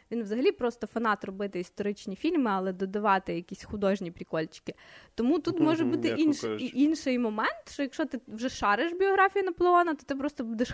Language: Ukrainian